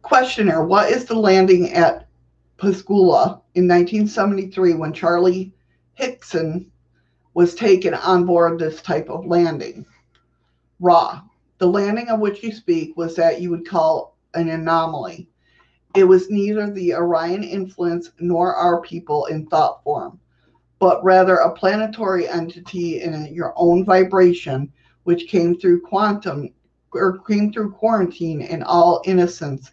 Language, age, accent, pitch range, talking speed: English, 50-69, American, 155-190 Hz, 135 wpm